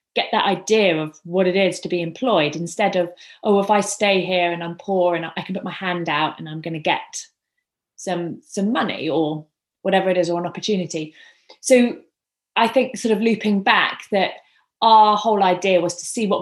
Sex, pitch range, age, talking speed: female, 175-220 Hz, 30-49, 210 wpm